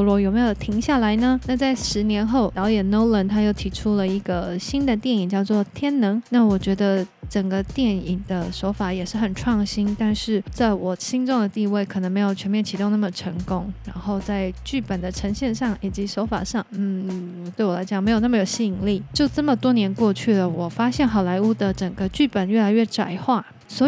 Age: 20-39